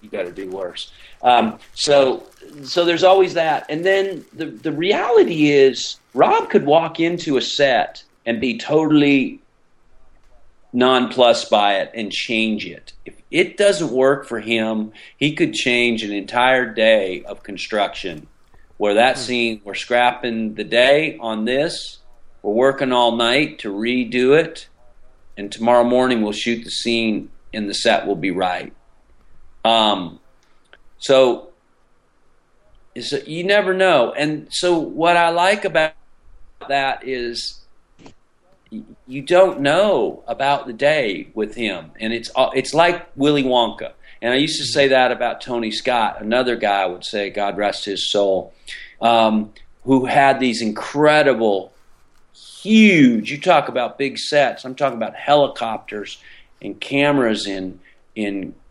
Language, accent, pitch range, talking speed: English, American, 110-145 Hz, 145 wpm